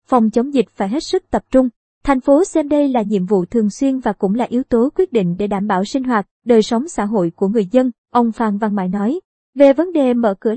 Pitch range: 210-255 Hz